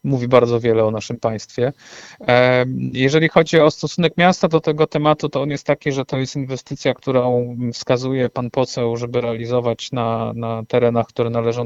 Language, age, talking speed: Polish, 40-59, 170 wpm